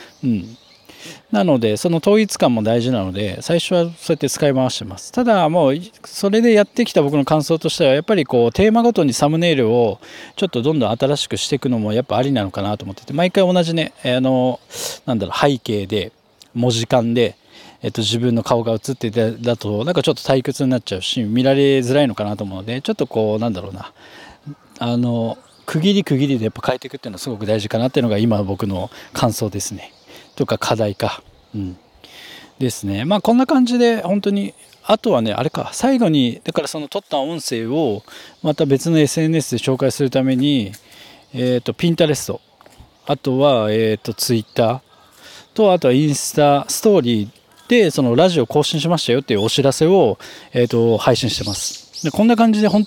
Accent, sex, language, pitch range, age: native, male, Japanese, 115-165 Hz, 20-39